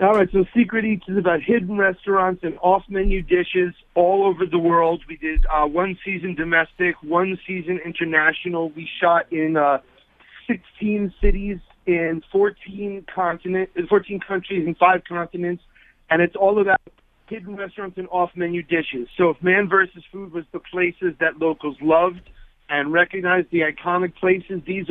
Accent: American